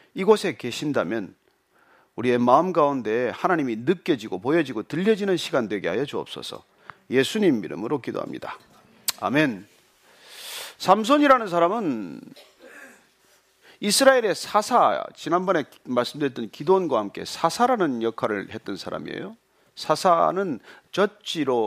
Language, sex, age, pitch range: Korean, male, 40-59, 165-265 Hz